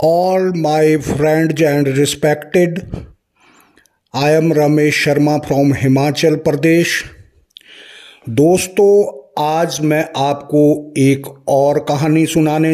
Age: 50-69